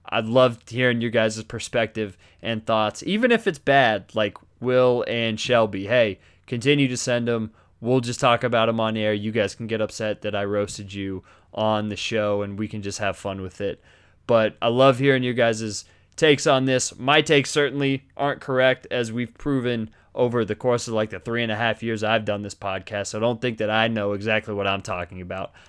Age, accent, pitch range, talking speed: 20-39, American, 105-130 Hz, 215 wpm